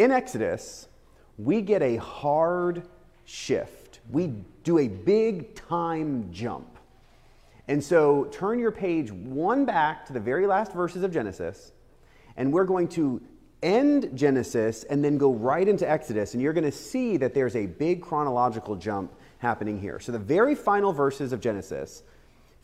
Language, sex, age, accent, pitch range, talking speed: English, male, 30-49, American, 110-160 Hz, 160 wpm